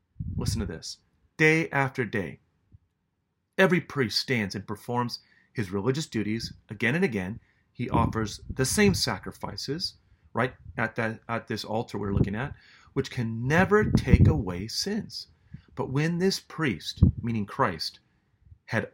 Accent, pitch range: American, 105-140 Hz